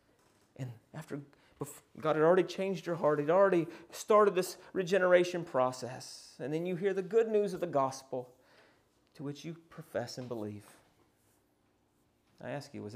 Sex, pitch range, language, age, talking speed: male, 110-160 Hz, English, 30-49, 155 wpm